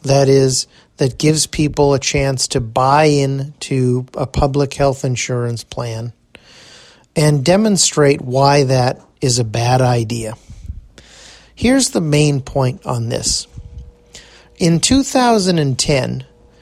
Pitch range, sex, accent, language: 130-155 Hz, male, American, English